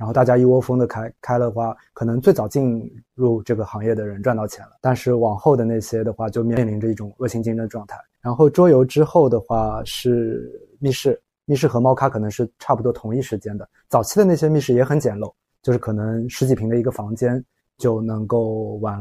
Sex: male